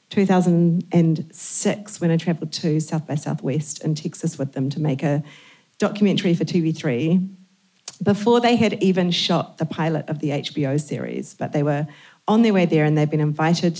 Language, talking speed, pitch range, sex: English, 175 wpm, 155-180 Hz, female